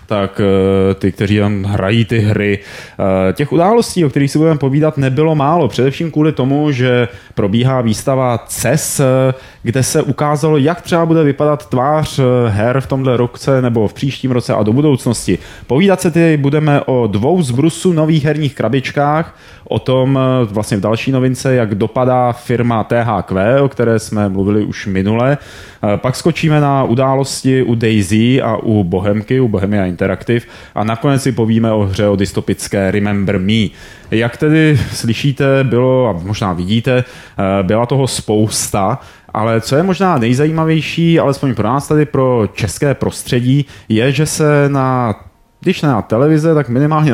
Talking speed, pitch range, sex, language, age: 155 wpm, 110-140 Hz, male, Czech, 20-39